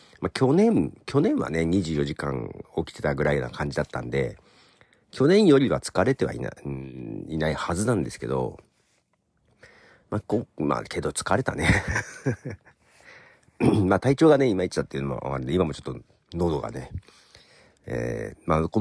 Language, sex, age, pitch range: Japanese, male, 50-69, 75-110 Hz